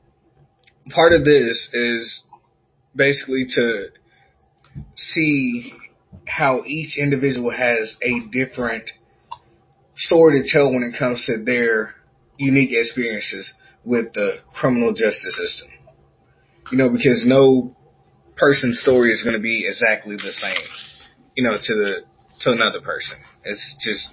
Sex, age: male, 20-39